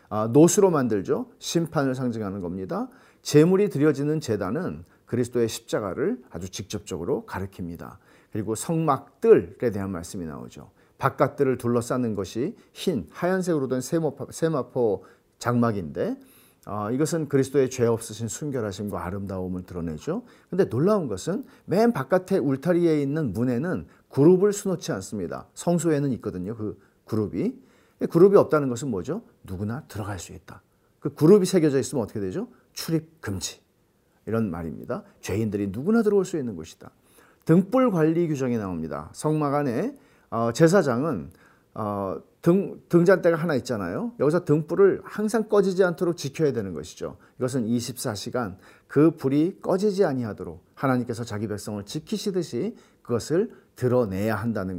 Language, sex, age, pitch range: Korean, male, 40-59, 110-165 Hz